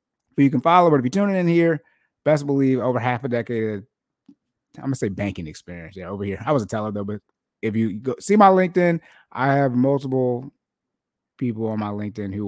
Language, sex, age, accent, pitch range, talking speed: English, male, 30-49, American, 105-135 Hz, 205 wpm